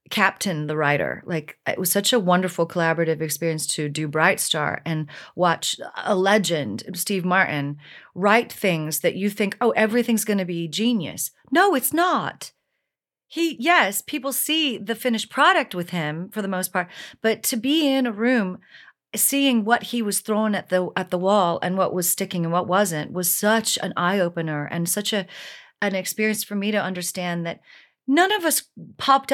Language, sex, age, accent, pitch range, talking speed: English, female, 40-59, American, 175-220 Hz, 185 wpm